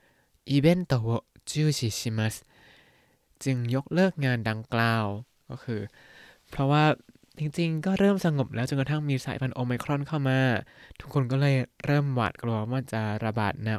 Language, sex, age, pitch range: Thai, male, 20-39, 115-145 Hz